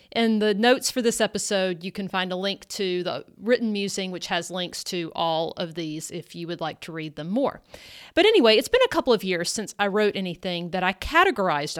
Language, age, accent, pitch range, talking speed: English, 40-59, American, 185-260 Hz, 230 wpm